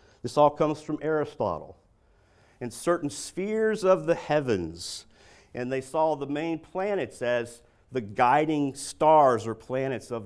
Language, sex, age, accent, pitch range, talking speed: English, male, 50-69, American, 100-145 Hz, 140 wpm